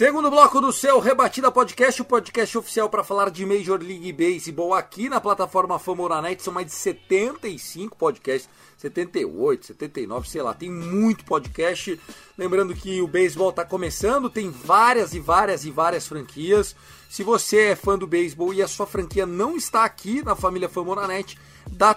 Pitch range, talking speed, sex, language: 180-230 Hz, 165 wpm, male, Portuguese